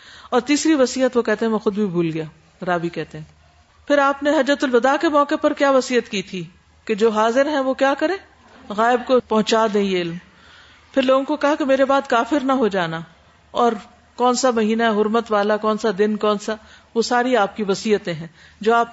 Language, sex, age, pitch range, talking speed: Urdu, female, 50-69, 210-265 Hz, 220 wpm